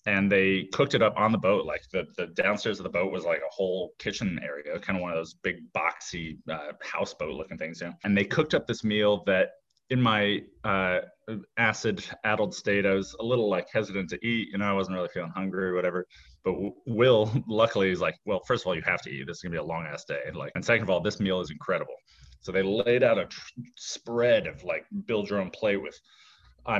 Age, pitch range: 30-49, 95-120 Hz